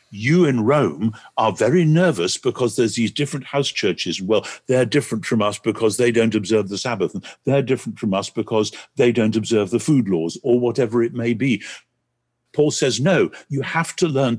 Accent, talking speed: British, 190 wpm